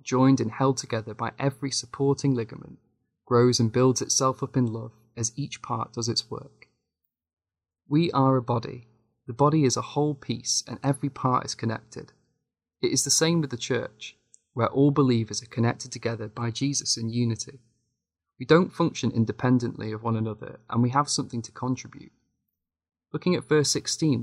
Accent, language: British, English